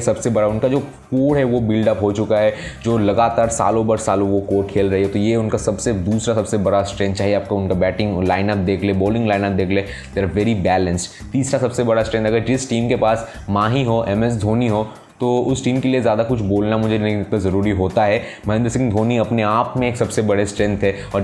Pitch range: 100-125 Hz